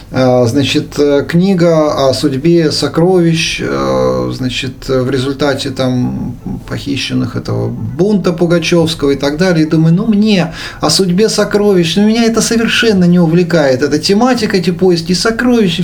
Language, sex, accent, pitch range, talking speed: Russian, male, native, 125-185 Hz, 125 wpm